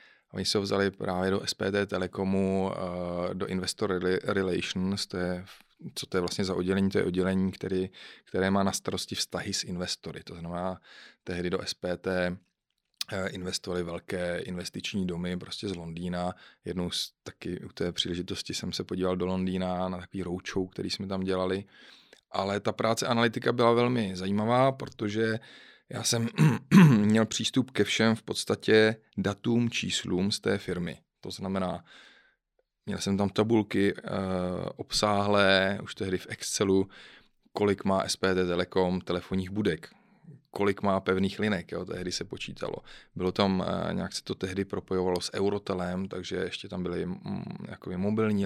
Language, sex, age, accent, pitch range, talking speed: Czech, male, 30-49, native, 90-105 Hz, 150 wpm